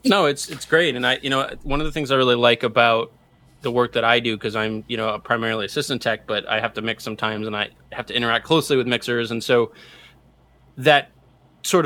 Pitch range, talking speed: 115-135 Hz, 240 wpm